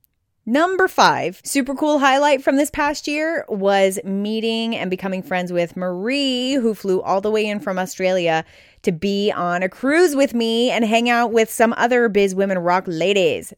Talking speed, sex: 180 wpm, female